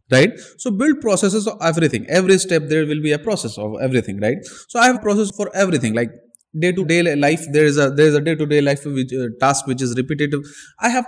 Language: Hindi